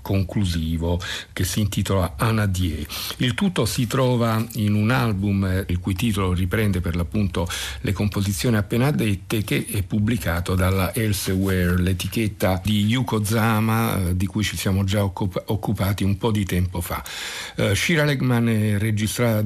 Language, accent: Italian, native